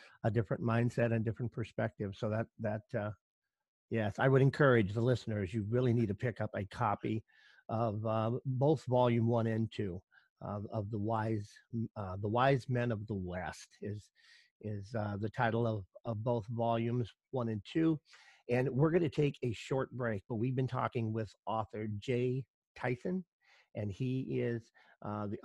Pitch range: 105-125 Hz